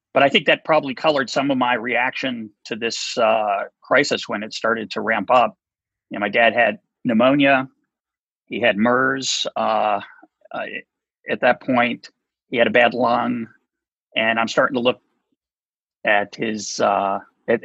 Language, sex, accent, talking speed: English, male, American, 165 wpm